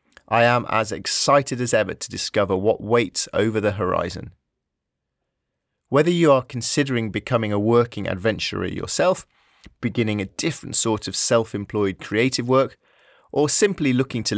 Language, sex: English, male